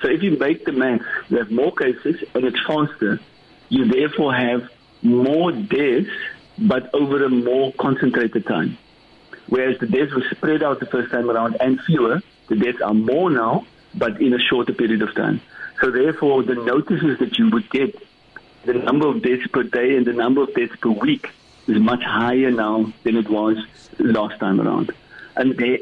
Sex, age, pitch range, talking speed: male, 60-79, 120-150 Hz, 190 wpm